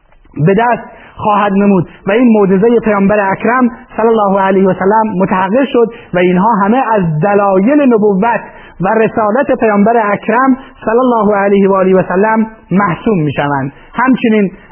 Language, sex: Persian, male